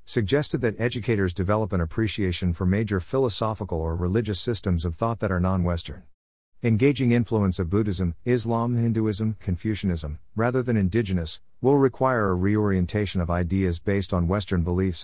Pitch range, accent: 90-115 Hz, American